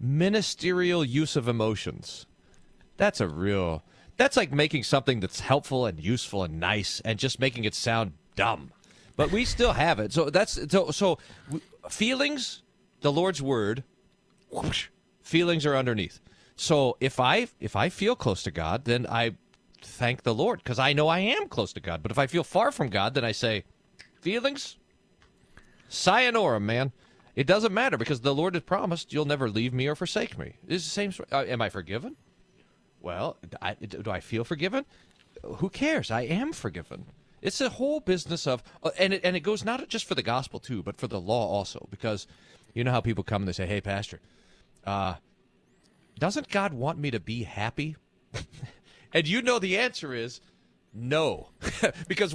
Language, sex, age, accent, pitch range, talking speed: English, male, 40-59, American, 110-185 Hz, 180 wpm